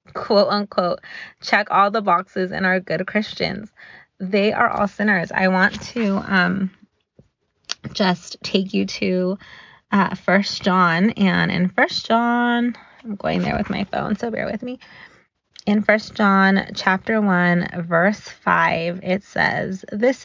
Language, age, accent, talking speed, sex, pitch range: English, 20-39, American, 145 wpm, female, 185-215 Hz